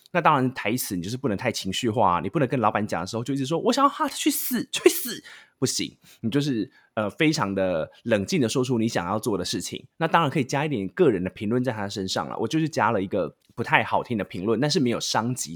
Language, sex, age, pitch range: Chinese, male, 20-39, 100-150 Hz